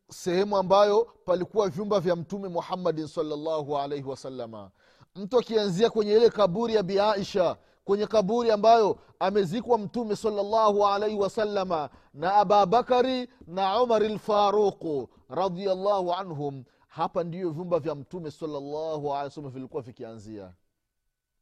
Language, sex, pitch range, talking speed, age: Swahili, male, 145-205 Hz, 125 wpm, 30-49